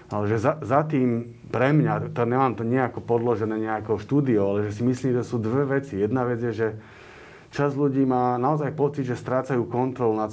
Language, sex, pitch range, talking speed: Slovak, male, 110-135 Hz, 205 wpm